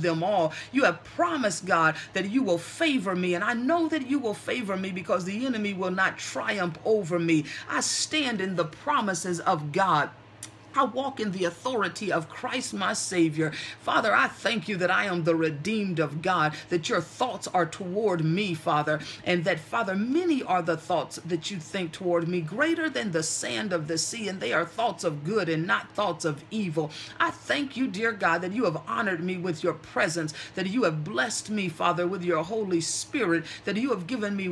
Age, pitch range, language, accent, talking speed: 40-59, 165-210 Hz, English, American, 205 wpm